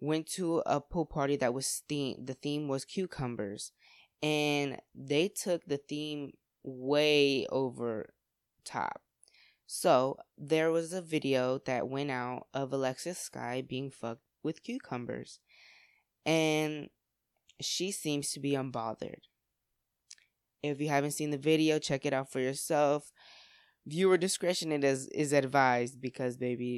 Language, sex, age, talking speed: English, female, 20-39, 130 wpm